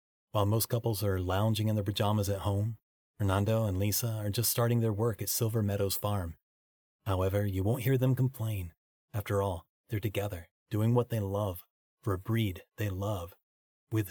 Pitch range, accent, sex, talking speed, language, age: 95-115 Hz, American, male, 180 wpm, English, 30-49